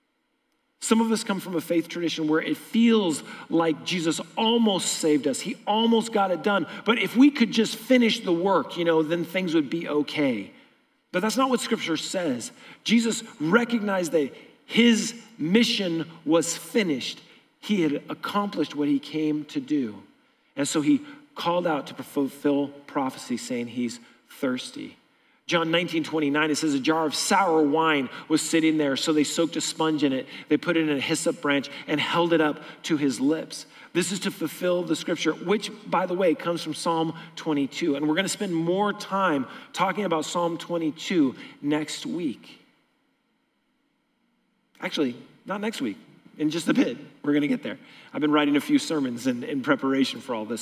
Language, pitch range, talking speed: English, 155-240 Hz, 180 wpm